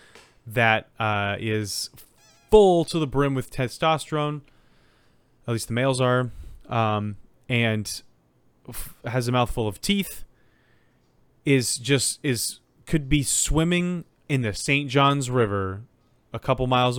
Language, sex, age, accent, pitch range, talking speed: English, male, 30-49, American, 100-130 Hz, 125 wpm